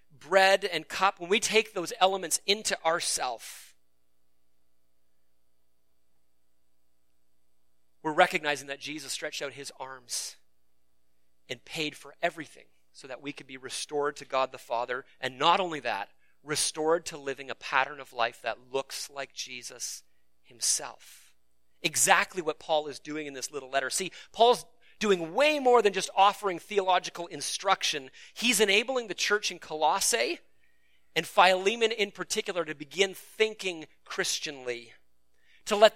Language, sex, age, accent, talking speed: English, male, 30-49, American, 140 wpm